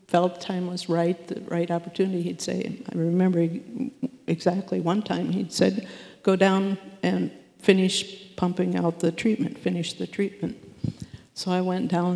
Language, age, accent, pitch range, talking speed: English, 60-79, American, 175-195 Hz, 155 wpm